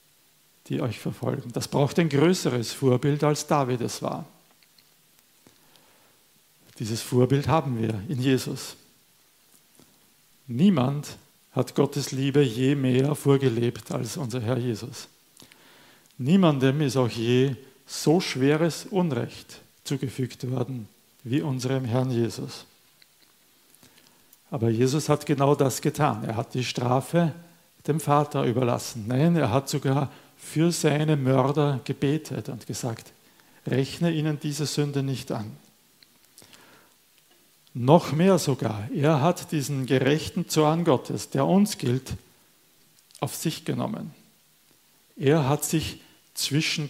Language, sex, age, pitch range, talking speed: German, male, 50-69, 125-155 Hz, 115 wpm